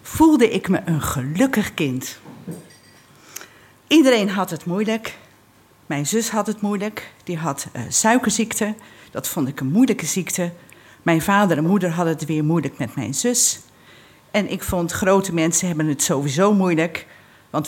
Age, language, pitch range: 50-69, Dutch, 145-200 Hz